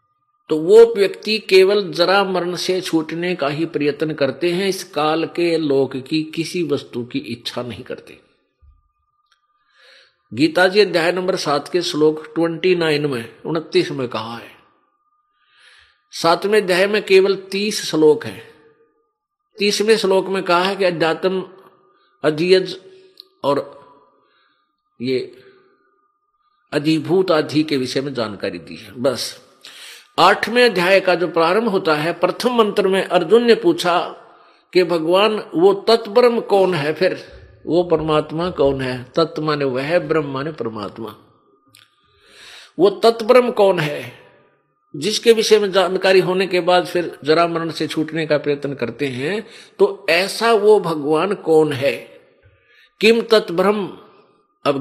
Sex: male